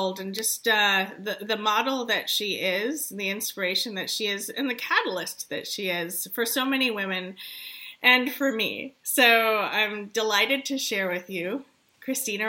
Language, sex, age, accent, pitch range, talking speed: English, female, 30-49, American, 190-255 Hz, 170 wpm